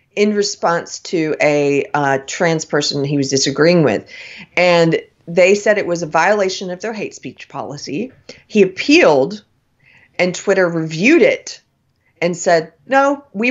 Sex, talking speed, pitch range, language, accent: female, 145 wpm, 140-200 Hz, English, American